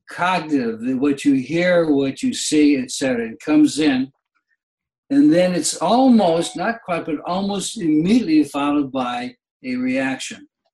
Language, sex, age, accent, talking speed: English, male, 60-79, American, 135 wpm